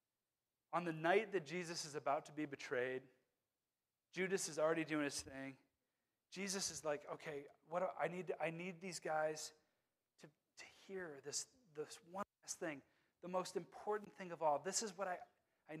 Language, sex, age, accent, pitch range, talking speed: English, male, 30-49, American, 155-225 Hz, 180 wpm